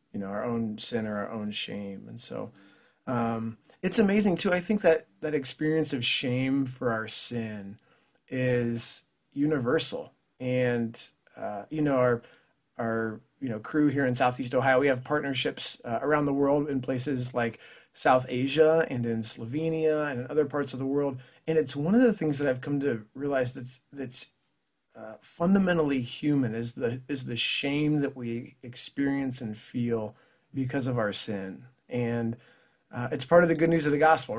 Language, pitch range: English, 125-155 Hz